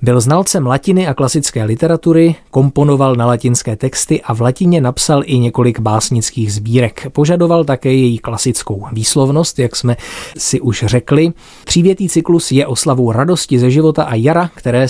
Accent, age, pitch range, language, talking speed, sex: native, 20-39, 120-145 Hz, Czech, 155 wpm, male